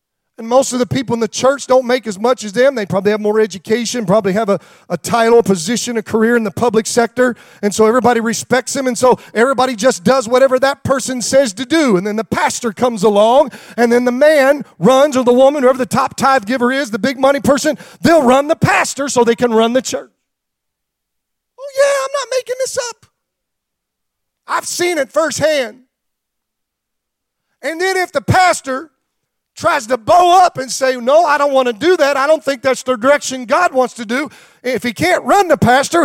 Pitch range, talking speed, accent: 220-280 Hz, 210 wpm, American